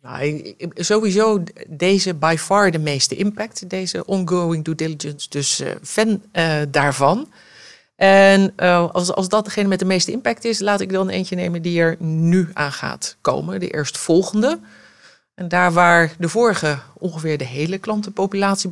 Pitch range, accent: 160-195 Hz, Dutch